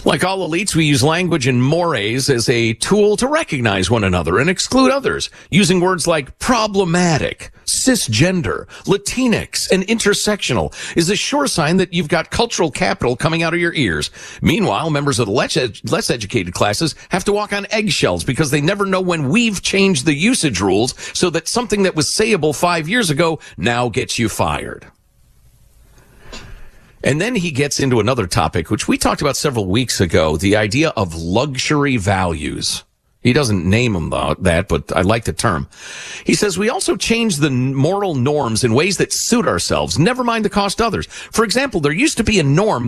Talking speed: 185 wpm